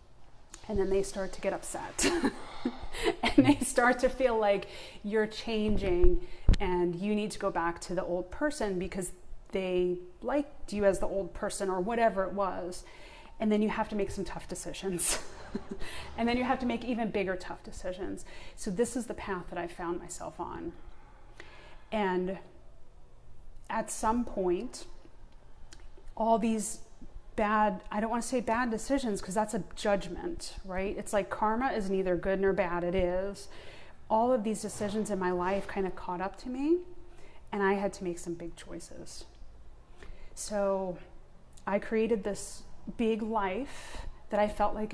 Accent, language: American, English